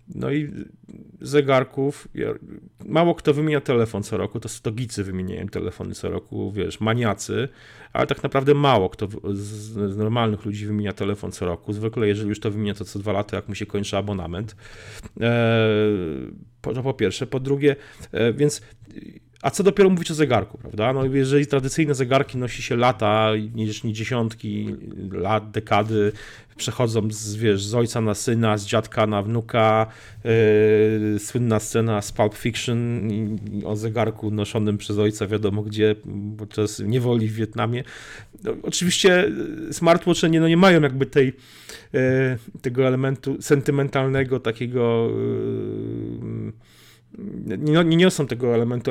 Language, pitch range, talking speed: Polish, 105-130 Hz, 140 wpm